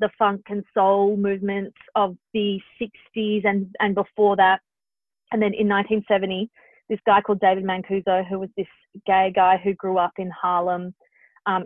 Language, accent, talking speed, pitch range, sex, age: English, Australian, 165 wpm, 190-225 Hz, female, 30-49